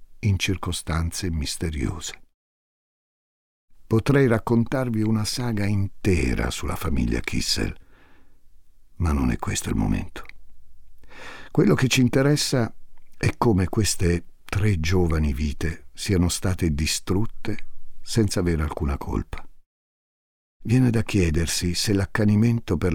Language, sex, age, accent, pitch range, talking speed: Italian, male, 50-69, native, 75-100 Hz, 105 wpm